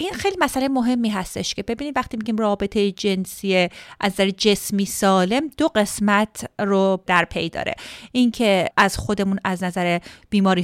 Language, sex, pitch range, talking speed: Persian, female, 195-255 Hz, 150 wpm